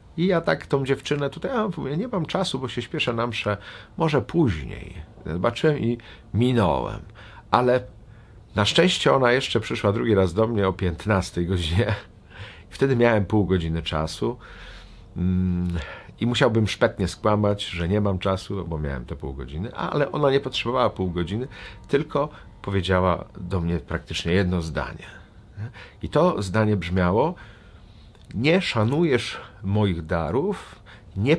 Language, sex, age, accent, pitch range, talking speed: Polish, male, 50-69, native, 90-135 Hz, 140 wpm